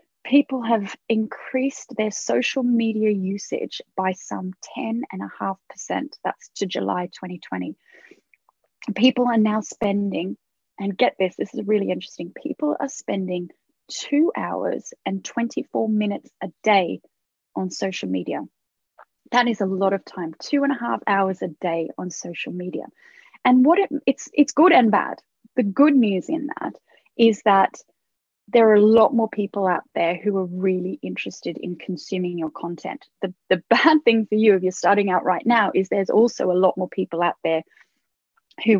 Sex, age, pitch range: female, 20-39, 185-240 Hz